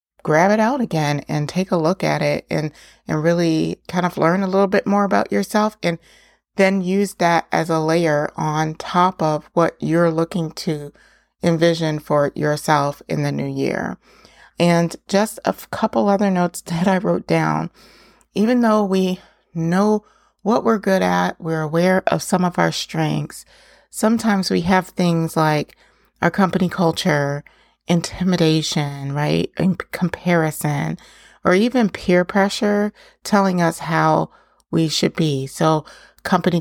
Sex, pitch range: female, 155-190 Hz